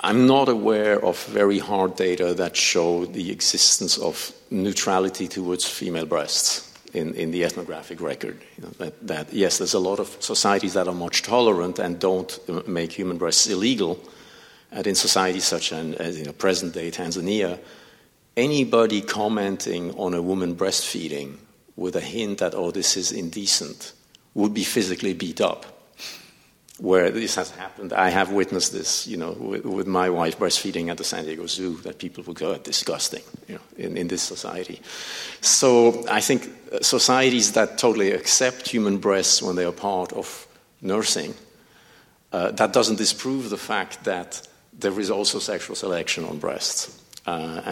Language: English